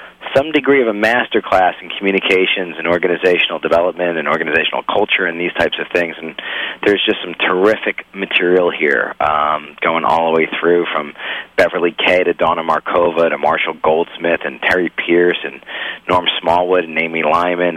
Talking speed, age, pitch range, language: 170 wpm, 40-59, 90-105 Hz, English